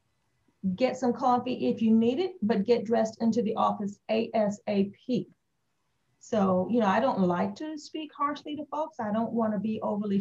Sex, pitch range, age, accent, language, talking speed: female, 190-235 Hz, 40-59, American, English, 175 wpm